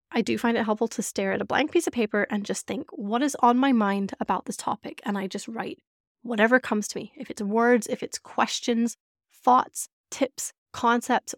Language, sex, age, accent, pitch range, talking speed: English, female, 20-39, American, 210-250 Hz, 215 wpm